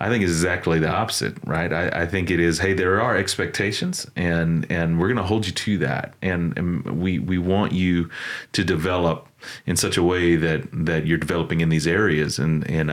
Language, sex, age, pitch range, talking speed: English, male, 30-49, 80-105 Hz, 215 wpm